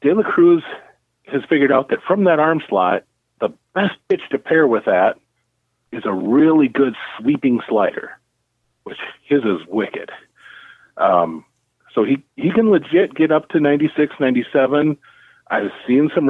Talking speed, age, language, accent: 155 wpm, 40-59, English, American